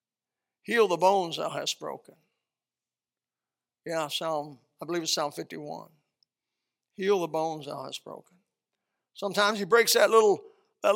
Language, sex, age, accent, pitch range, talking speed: English, male, 60-79, American, 190-295 Hz, 135 wpm